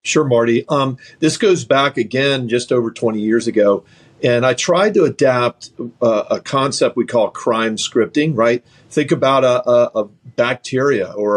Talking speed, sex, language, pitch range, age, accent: 170 wpm, male, English, 115-140 Hz, 50-69, American